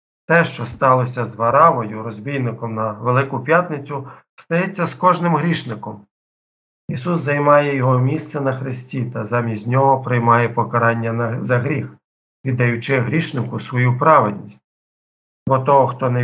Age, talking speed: 50-69, 130 wpm